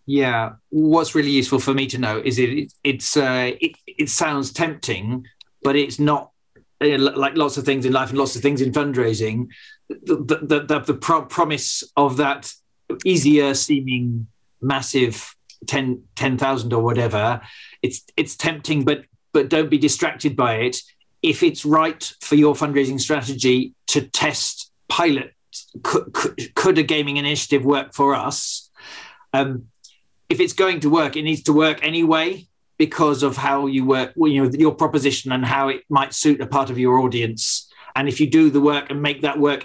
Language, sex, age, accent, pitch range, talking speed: English, male, 40-59, British, 135-150 Hz, 180 wpm